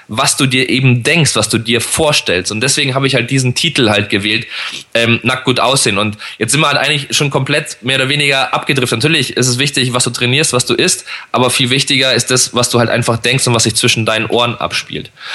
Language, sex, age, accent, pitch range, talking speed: German, male, 20-39, German, 125-145 Hz, 240 wpm